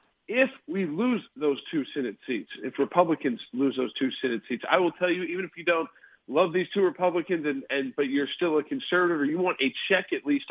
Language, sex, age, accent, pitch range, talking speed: English, male, 40-59, American, 135-180 Hz, 230 wpm